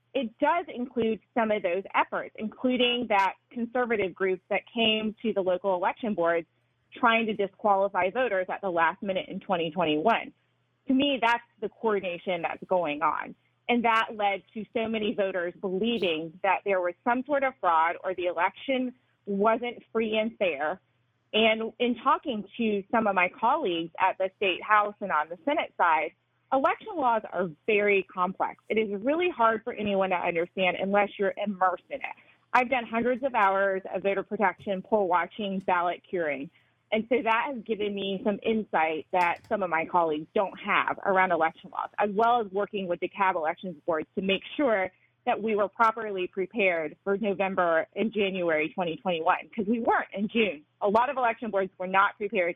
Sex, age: female, 30-49